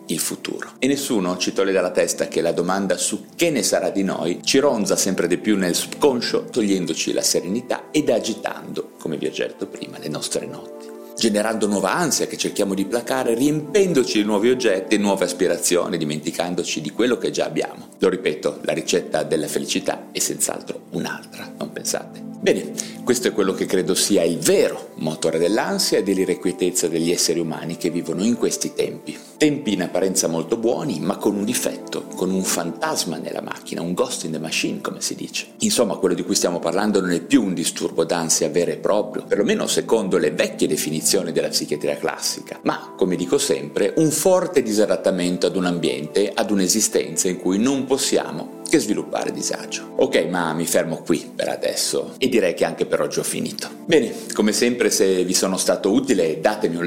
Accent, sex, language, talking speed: native, male, Italian, 190 wpm